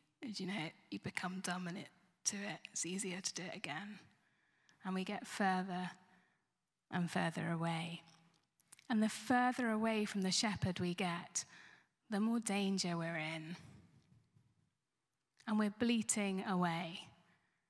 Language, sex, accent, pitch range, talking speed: English, female, British, 190-295 Hz, 140 wpm